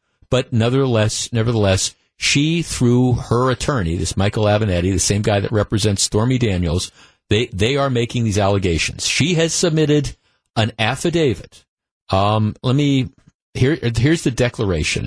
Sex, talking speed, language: male, 140 wpm, English